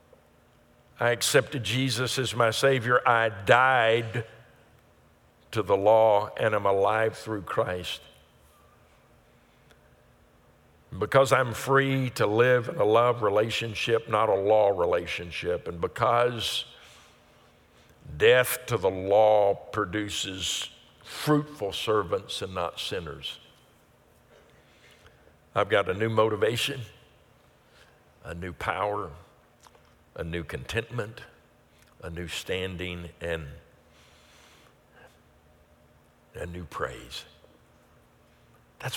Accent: American